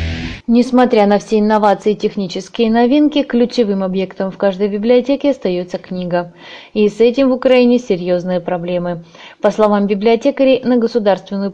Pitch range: 190-240 Hz